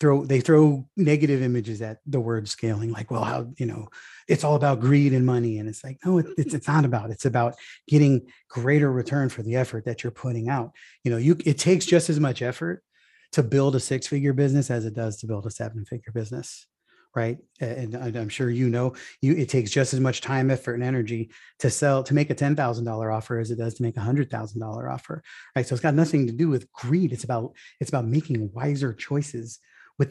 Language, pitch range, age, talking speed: English, 115-145 Hz, 30-49, 235 wpm